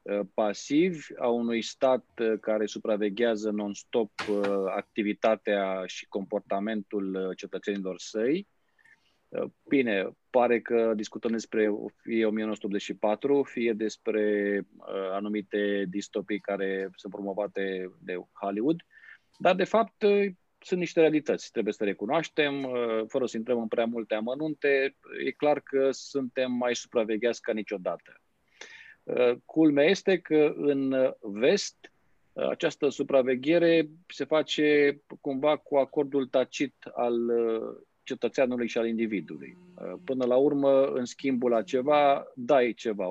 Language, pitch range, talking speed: Romanian, 110-150 Hz, 110 wpm